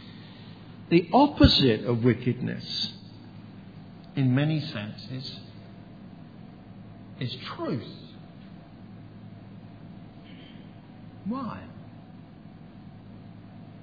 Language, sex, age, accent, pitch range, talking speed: English, male, 50-69, British, 125-180 Hz, 45 wpm